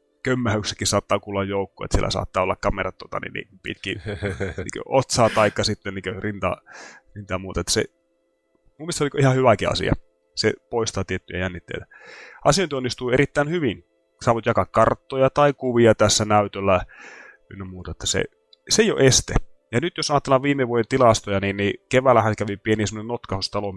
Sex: male